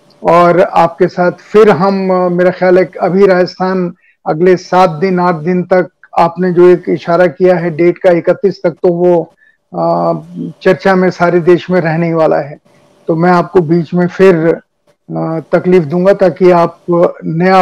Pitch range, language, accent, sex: 175-195 Hz, Hindi, native, male